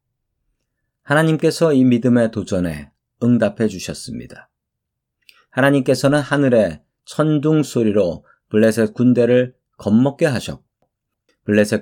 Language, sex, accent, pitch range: Korean, male, native, 105-135 Hz